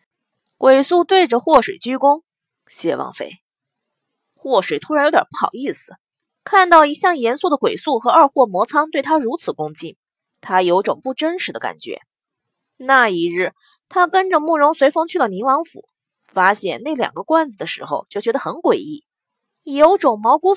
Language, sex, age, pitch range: Chinese, female, 20-39, 235-325 Hz